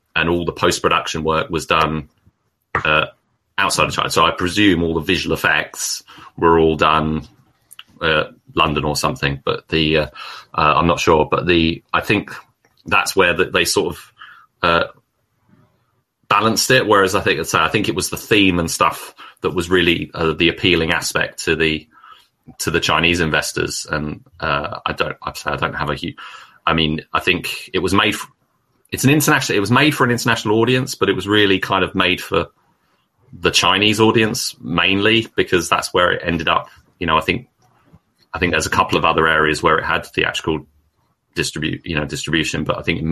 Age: 30-49